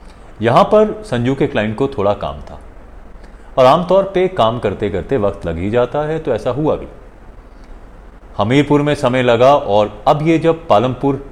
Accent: native